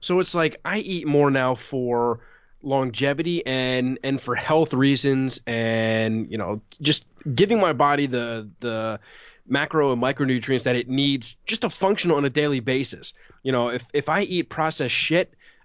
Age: 20-39